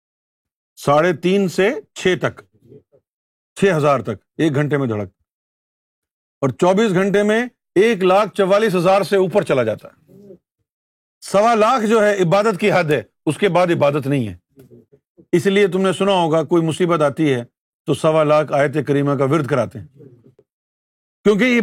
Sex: male